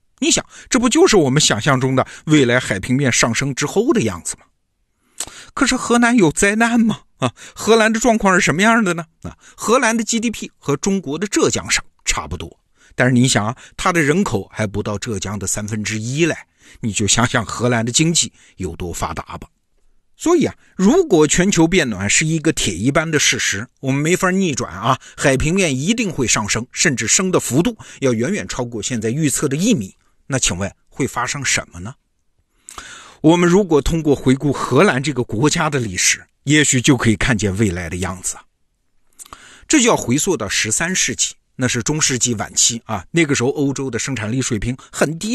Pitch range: 115-180 Hz